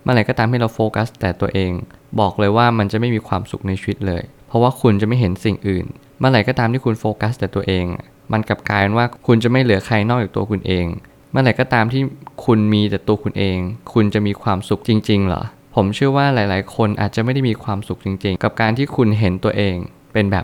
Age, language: 20-39, Thai